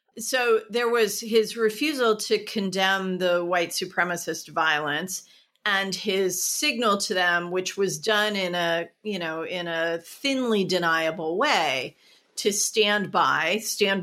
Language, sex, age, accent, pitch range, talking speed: English, female, 40-59, American, 190-245 Hz, 135 wpm